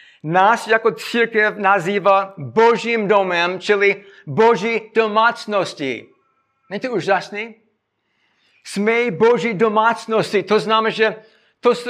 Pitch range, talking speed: 170-220 Hz, 95 wpm